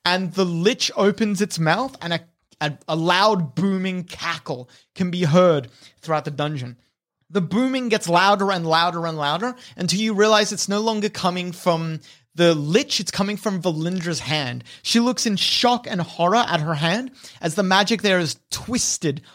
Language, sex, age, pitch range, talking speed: English, male, 30-49, 160-215 Hz, 175 wpm